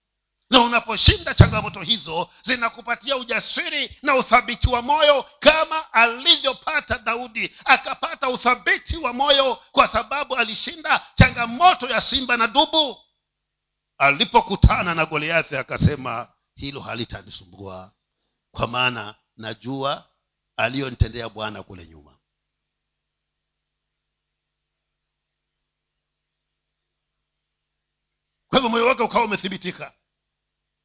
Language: Swahili